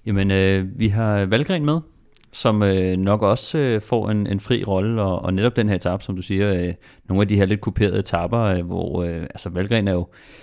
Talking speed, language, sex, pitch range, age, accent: 225 wpm, Danish, male, 90-105 Hz, 30-49, native